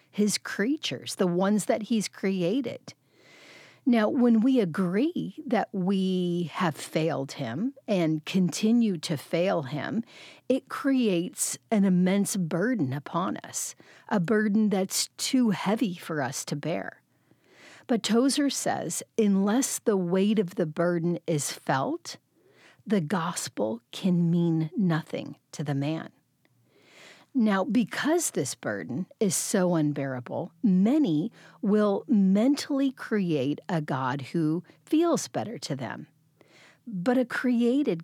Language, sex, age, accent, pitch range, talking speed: English, female, 40-59, American, 160-225 Hz, 120 wpm